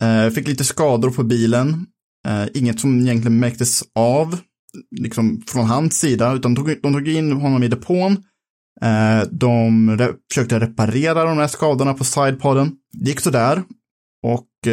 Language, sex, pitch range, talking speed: Swedish, male, 115-150 Hz, 140 wpm